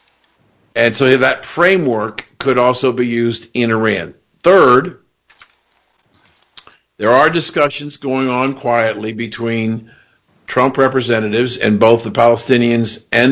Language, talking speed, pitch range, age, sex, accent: English, 115 wpm, 115-135 Hz, 50-69, male, American